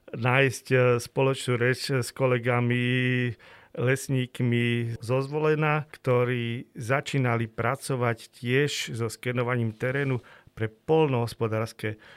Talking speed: 85 wpm